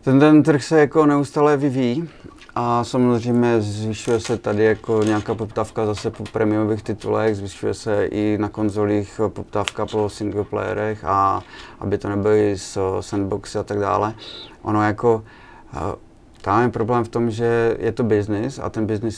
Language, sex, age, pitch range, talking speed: Czech, male, 30-49, 100-110 Hz, 155 wpm